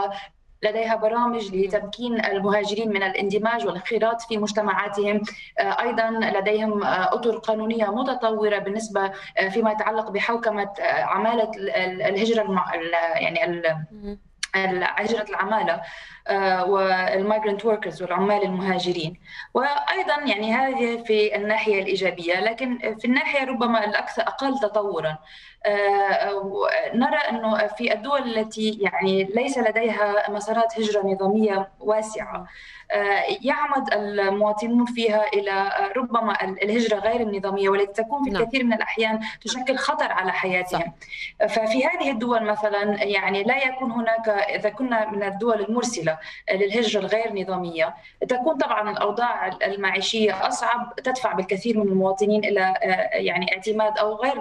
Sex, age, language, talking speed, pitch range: female, 20-39, Arabic, 110 wpm, 195-230 Hz